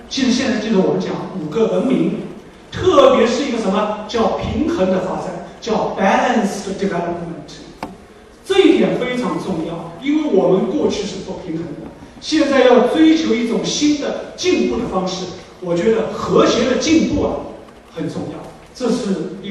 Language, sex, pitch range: Chinese, male, 185-255 Hz